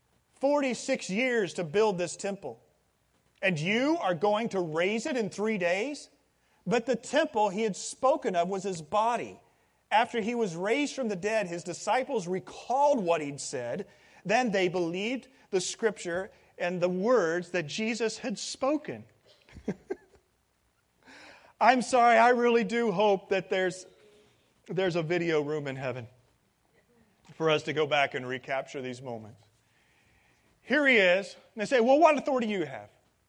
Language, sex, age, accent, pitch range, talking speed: English, male, 40-59, American, 170-255 Hz, 155 wpm